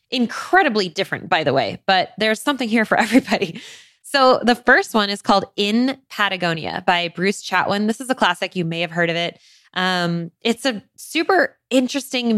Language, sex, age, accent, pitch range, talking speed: English, female, 20-39, American, 175-220 Hz, 180 wpm